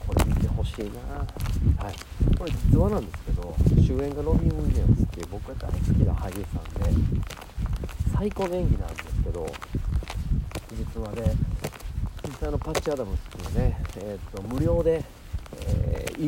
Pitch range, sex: 85-105 Hz, male